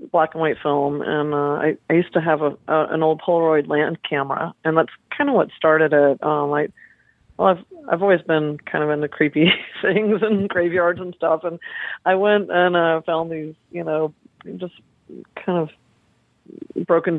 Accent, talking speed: American, 190 wpm